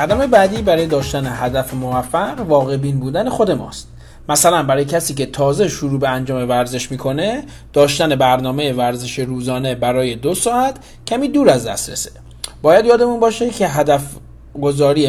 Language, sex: Persian, male